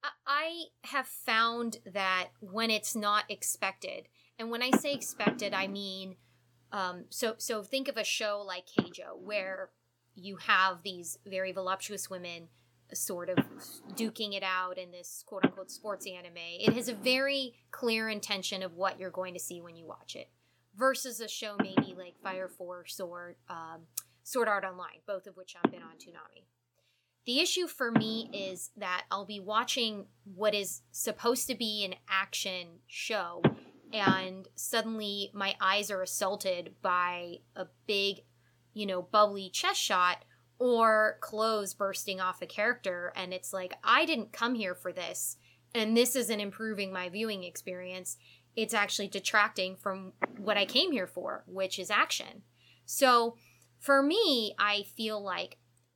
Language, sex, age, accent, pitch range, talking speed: English, female, 20-39, American, 180-220 Hz, 160 wpm